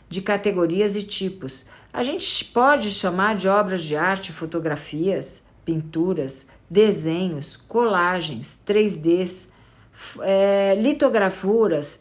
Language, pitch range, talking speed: Portuguese, 170-235 Hz, 90 wpm